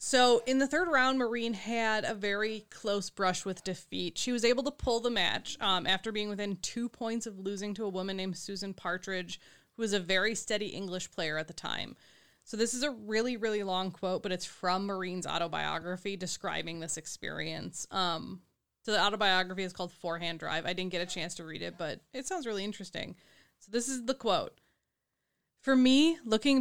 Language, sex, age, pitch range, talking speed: English, female, 20-39, 180-220 Hz, 200 wpm